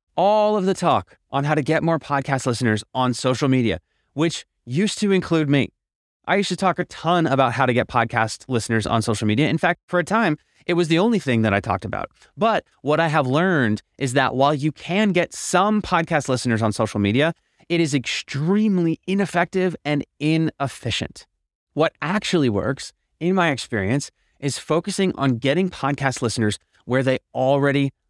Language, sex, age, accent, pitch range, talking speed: English, male, 30-49, American, 125-180 Hz, 185 wpm